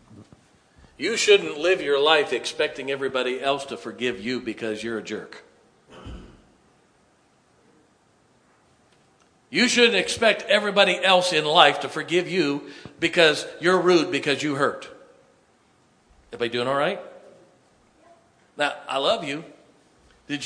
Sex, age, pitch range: male, 50-69, 125-185 Hz